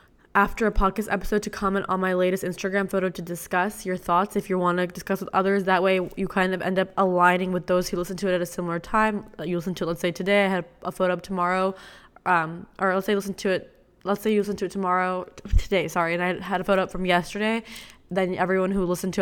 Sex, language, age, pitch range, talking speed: female, English, 10-29, 180-200 Hz, 255 wpm